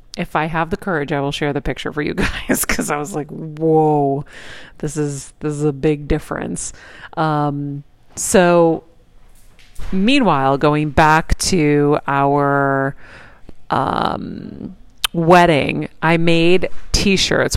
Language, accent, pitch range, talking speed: English, American, 145-165 Hz, 125 wpm